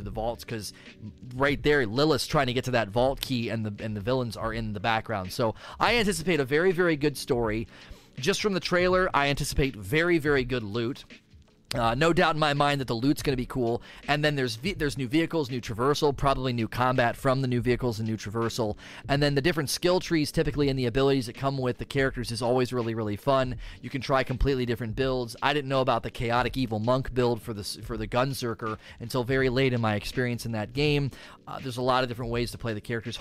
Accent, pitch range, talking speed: American, 115-140 Hz, 240 wpm